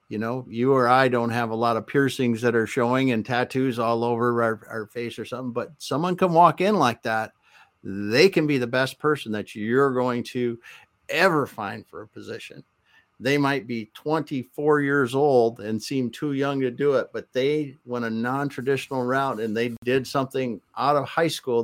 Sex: male